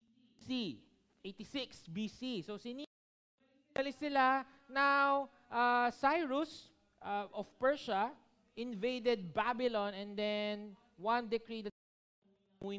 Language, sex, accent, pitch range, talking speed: Filipino, male, native, 205-265 Hz, 90 wpm